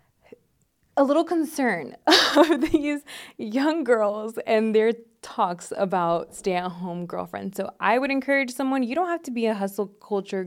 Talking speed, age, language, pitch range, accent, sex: 150 wpm, 20-39, English, 185-220 Hz, American, female